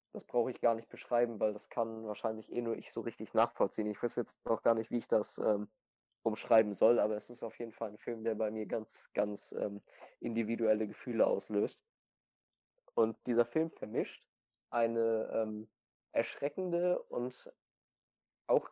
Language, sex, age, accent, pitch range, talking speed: German, male, 20-39, German, 110-130 Hz, 175 wpm